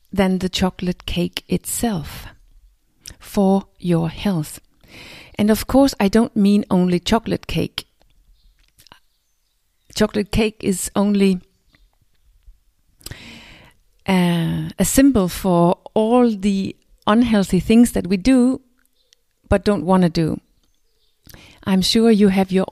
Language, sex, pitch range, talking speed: English, female, 165-215 Hz, 110 wpm